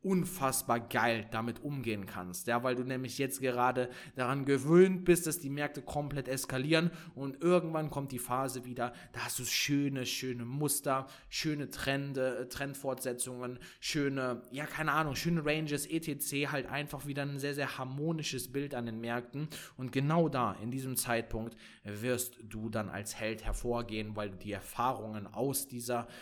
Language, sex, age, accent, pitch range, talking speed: German, male, 20-39, German, 125-150 Hz, 160 wpm